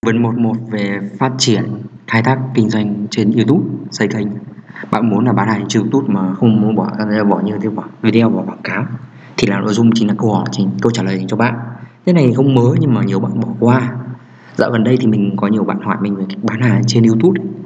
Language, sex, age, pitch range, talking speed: Vietnamese, male, 20-39, 110-130 Hz, 245 wpm